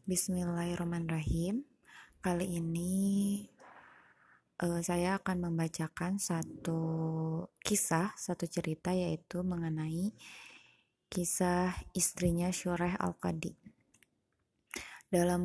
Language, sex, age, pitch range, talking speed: Indonesian, female, 20-39, 165-180 Hz, 70 wpm